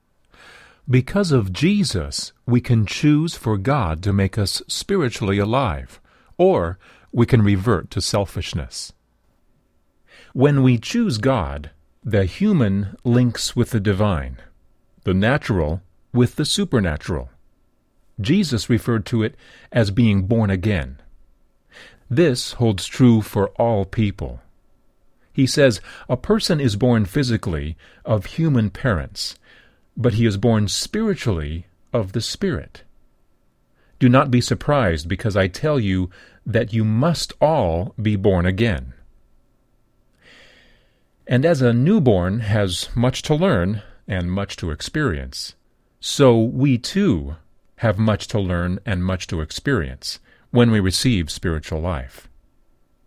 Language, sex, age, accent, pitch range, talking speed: English, male, 50-69, American, 90-125 Hz, 125 wpm